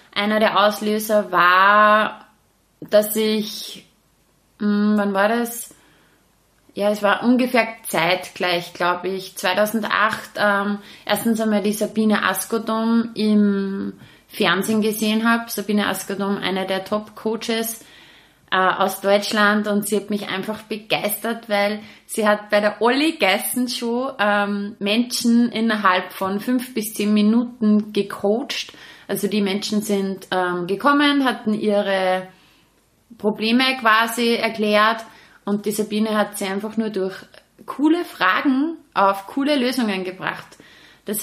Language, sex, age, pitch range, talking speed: German, female, 20-39, 195-225 Hz, 120 wpm